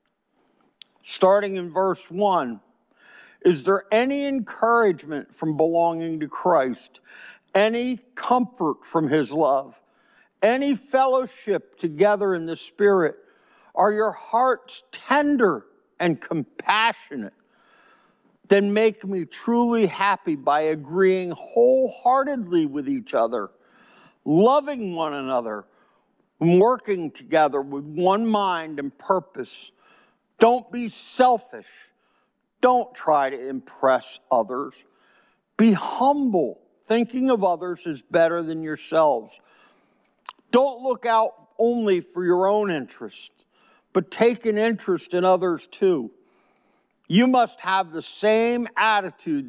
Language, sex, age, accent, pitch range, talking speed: English, male, 60-79, American, 170-245 Hz, 105 wpm